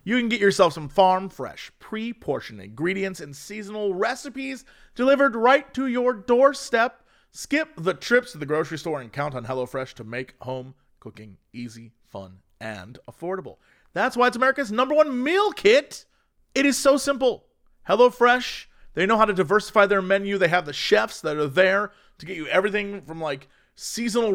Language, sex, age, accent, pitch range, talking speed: English, male, 30-49, American, 150-215 Hz, 170 wpm